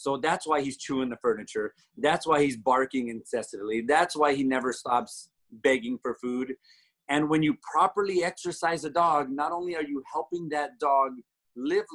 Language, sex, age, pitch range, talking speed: English, male, 30-49, 140-180 Hz, 175 wpm